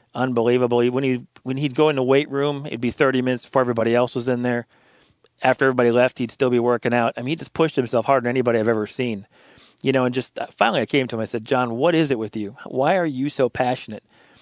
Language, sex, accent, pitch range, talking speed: English, male, American, 120-145 Hz, 265 wpm